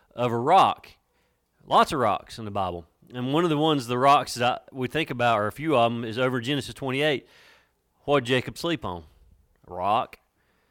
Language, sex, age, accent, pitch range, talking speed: English, male, 30-49, American, 115-150 Hz, 200 wpm